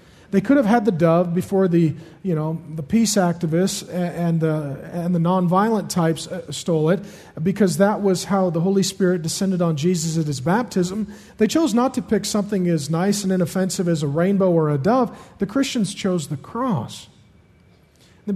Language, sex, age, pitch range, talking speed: English, male, 40-59, 170-210 Hz, 185 wpm